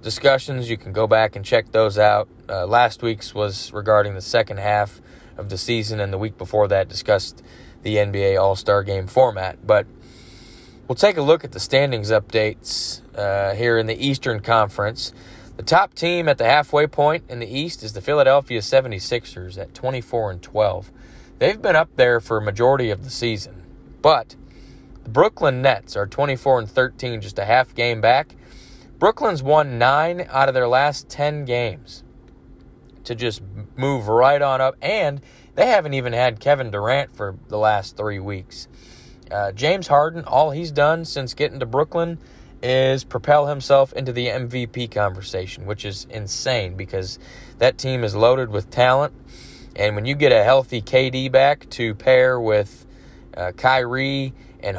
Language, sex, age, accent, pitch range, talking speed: English, male, 20-39, American, 105-135 Hz, 170 wpm